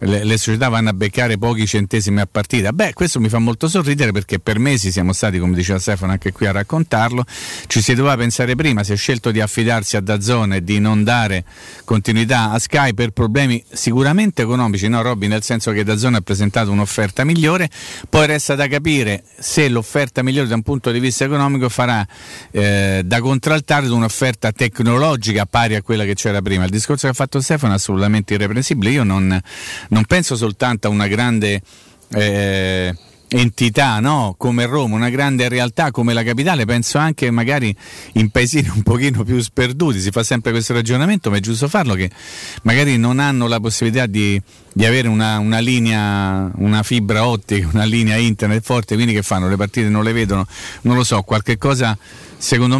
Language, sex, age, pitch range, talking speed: Italian, male, 40-59, 105-130 Hz, 190 wpm